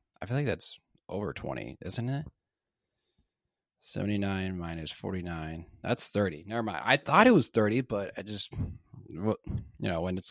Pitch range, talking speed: 90-110 Hz, 155 wpm